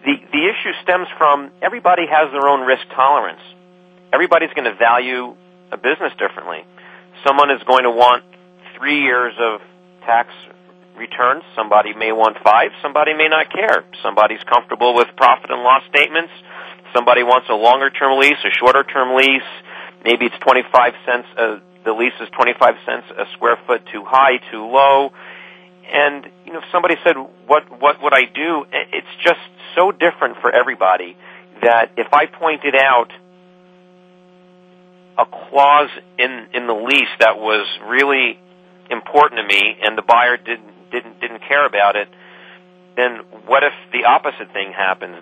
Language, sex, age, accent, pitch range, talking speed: English, male, 40-59, American, 115-170 Hz, 160 wpm